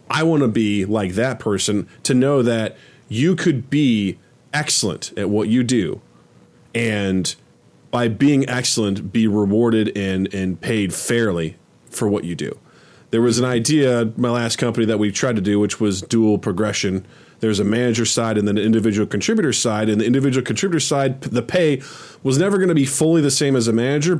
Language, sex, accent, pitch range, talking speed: English, male, American, 110-140 Hz, 190 wpm